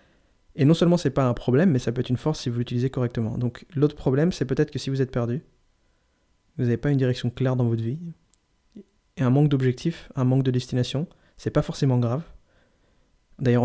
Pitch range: 120-135 Hz